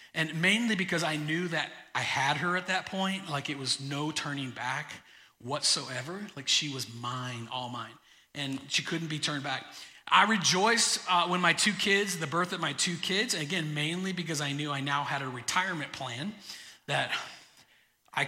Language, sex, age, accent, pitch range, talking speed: English, male, 40-59, American, 150-205 Hz, 190 wpm